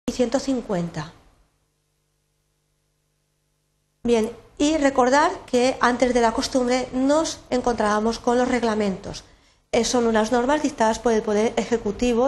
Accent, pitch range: Spanish, 215-255 Hz